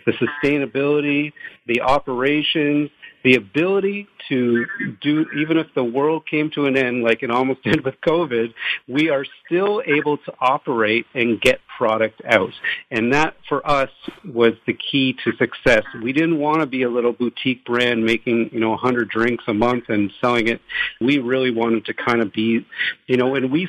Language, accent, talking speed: English, American, 180 wpm